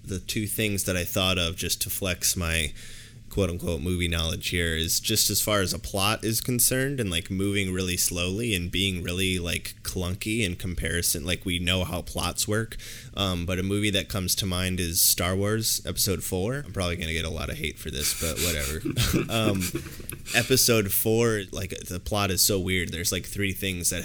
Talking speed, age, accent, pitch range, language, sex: 205 wpm, 20-39, American, 85-105 Hz, English, male